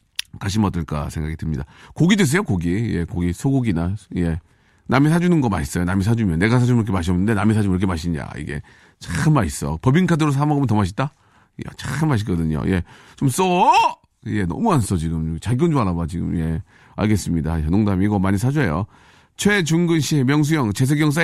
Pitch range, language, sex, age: 95-140 Hz, Korean, male, 40-59